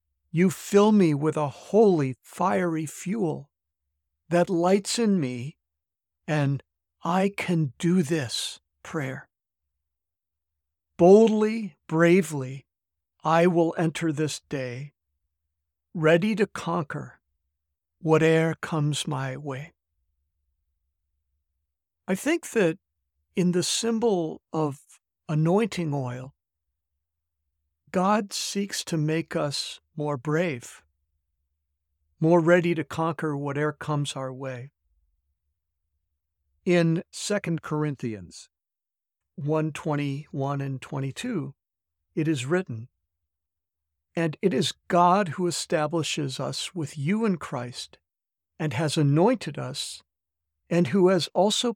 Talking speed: 100 wpm